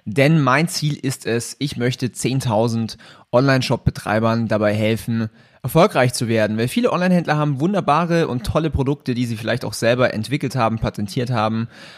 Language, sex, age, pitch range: German, male, 30-49, 110-135 Hz